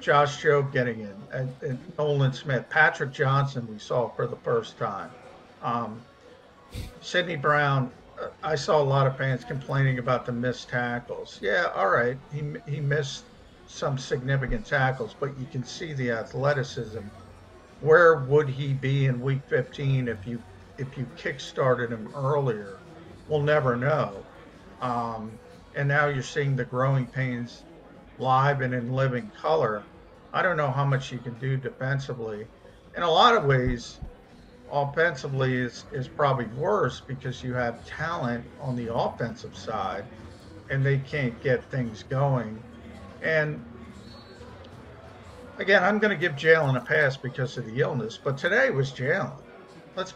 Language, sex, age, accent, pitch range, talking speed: English, male, 50-69, American, 120-145 Hz, 150 wpm